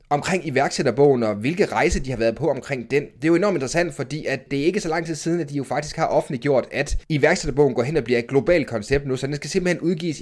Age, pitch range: 30-49, 135-180 Hz